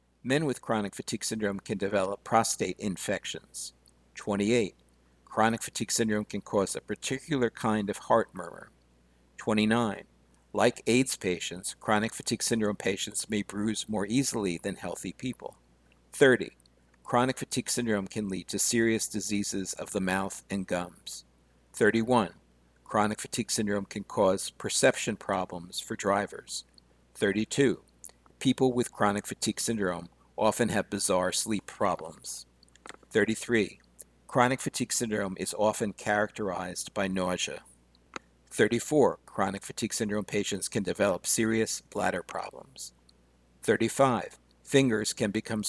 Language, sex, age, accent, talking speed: English, male, 60-79, American, 125 wpm